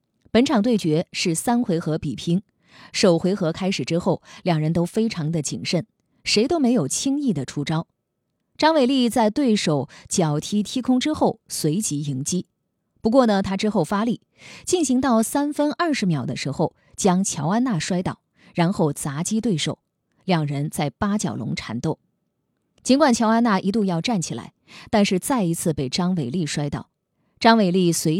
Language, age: Chinese, 20-39